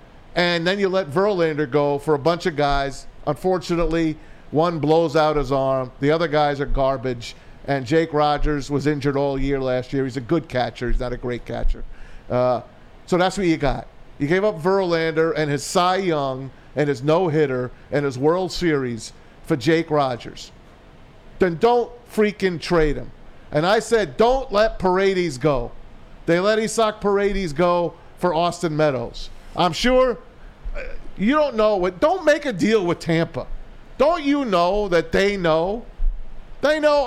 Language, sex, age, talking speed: English, male, 50-69, 170 wpm